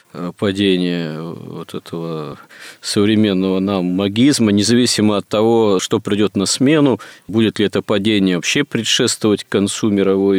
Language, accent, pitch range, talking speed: Russian, native, 90-110 Hz, 125 wpm